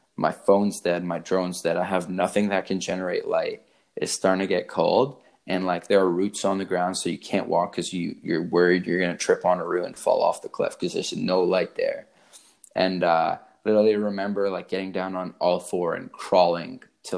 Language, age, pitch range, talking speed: English, 20-39, 90-105 Hz, 225 wpm